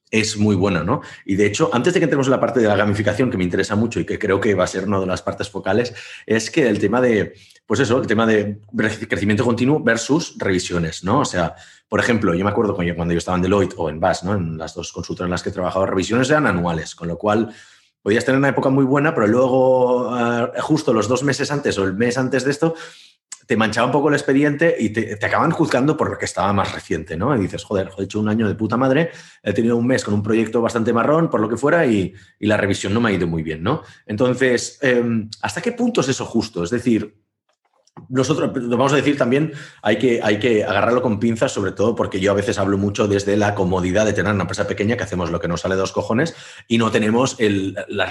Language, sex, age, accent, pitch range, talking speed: Spanish, male, 30-49, Spanish, 100-125 Hz, 250 wpm